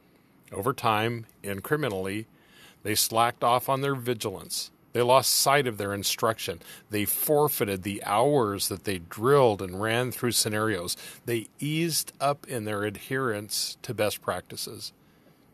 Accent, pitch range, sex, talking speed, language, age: American, 105-135 Hz, male, 135 wpm, English, 40-59